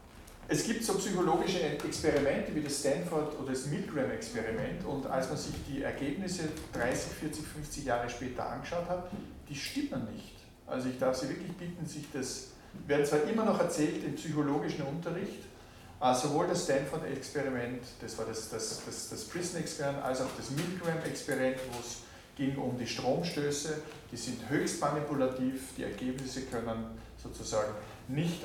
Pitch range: 115-155 Hz